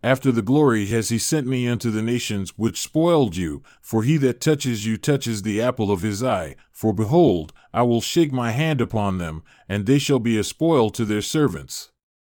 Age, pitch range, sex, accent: 40-59, 110-140 Hz, male, American